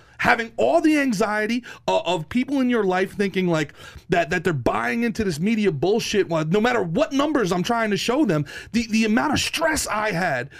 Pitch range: 230-340 Hz